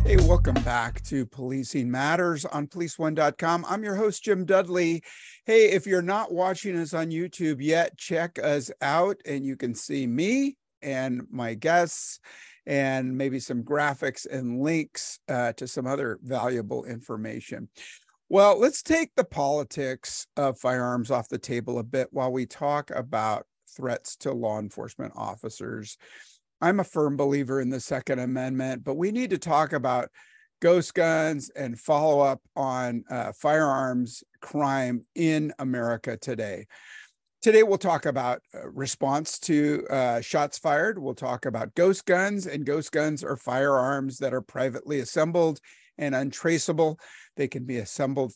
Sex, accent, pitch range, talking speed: male, American, 125-165 Hz, 150 wpm